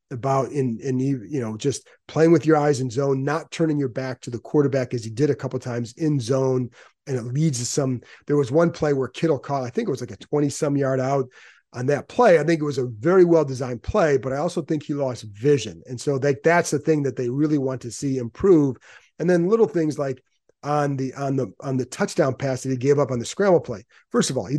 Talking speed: 260 wpm